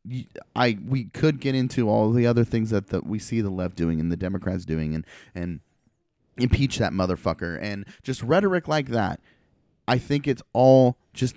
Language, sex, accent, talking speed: English, male, American, 180 wpm